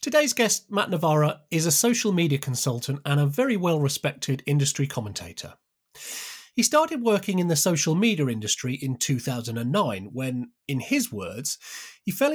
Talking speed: 150 wpm